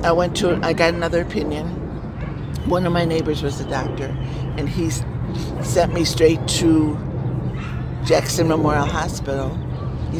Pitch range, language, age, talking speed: 135-160 Hz, English, 60-79, 140 wpm